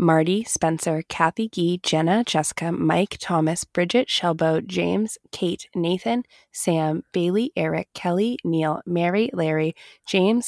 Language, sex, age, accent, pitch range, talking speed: English, female, 20-39, American, 165-215 Hz, 120 wpm